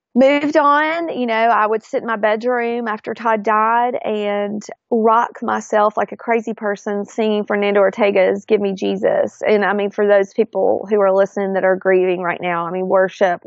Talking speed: 190 wpm